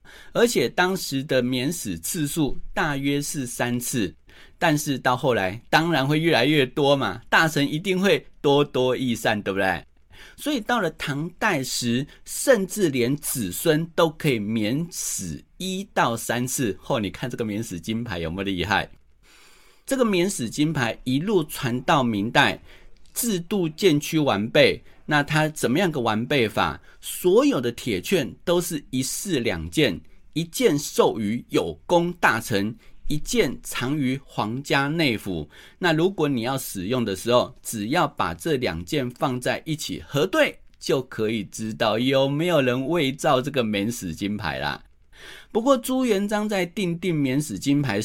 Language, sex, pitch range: Chinese, male, 115-165 Hz